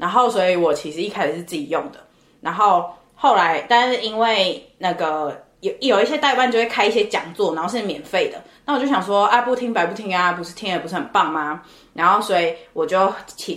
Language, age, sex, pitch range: Chinese, 20-39, female, 160-210 Hz